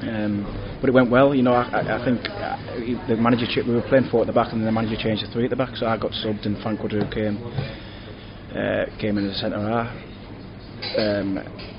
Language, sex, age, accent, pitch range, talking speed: English, male, 20-39, British, 105-115 Hz, 235 wpm